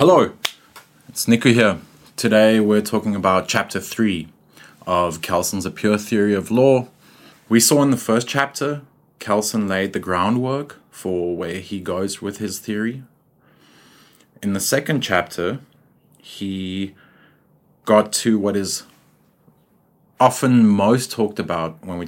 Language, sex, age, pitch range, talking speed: English, male, 30-49, 95-115 Hz, 135 wpm